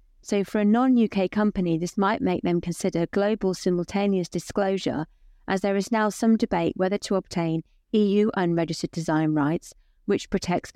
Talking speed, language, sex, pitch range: 155 wpm, English, female, 170-225 Hz